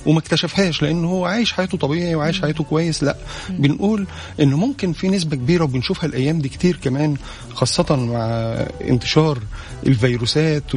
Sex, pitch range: male, 125-175 Hz